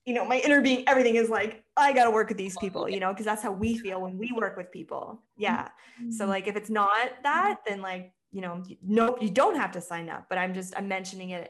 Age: 20-39